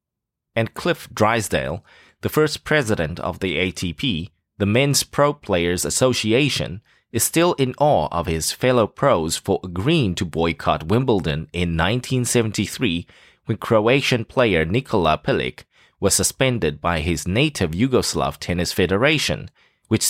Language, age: English, 20-39